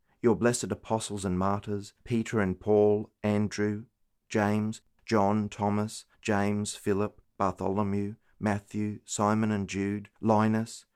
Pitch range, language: 95-110 Hz, English